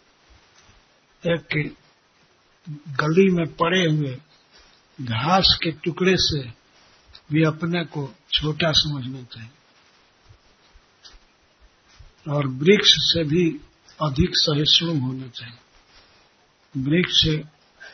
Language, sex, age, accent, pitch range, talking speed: Hindi, male, 60-79, native, 135-165 Hz, 75 wpm